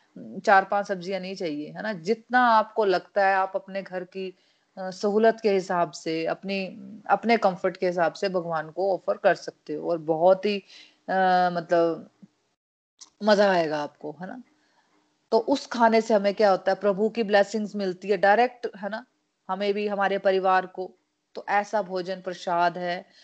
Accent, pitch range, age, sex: native, 175-205 Hz, 30-49, female